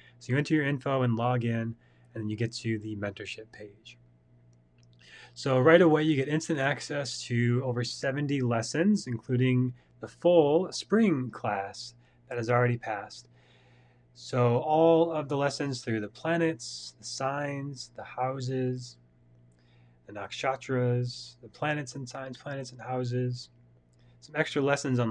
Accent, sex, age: American, male, 30-49